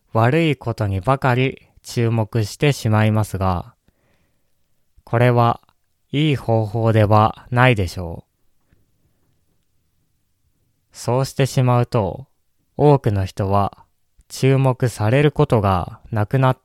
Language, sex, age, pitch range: Japanese, male, 20-39, 95-130 Hz